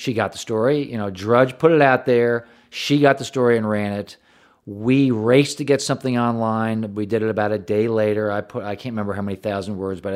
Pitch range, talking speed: 100-120 Hz, 240 wpm